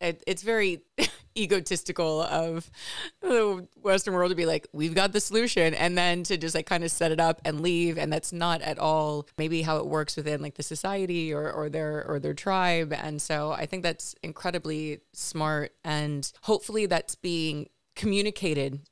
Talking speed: 185 wpm